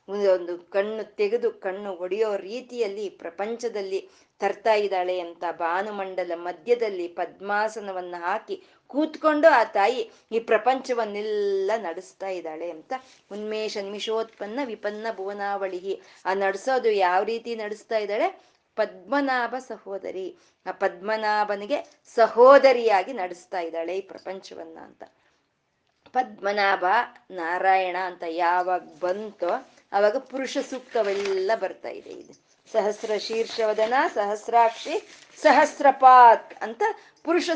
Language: Kannada